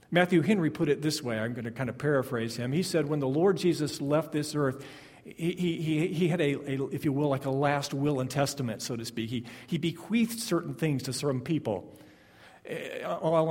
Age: 50-69